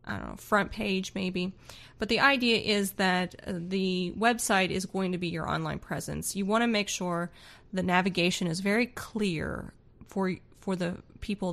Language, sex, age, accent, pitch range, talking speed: English, female, 30-49, American, 175-220 Hz, 175 wpm